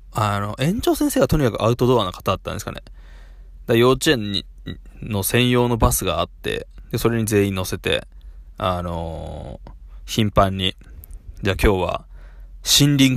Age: 20-39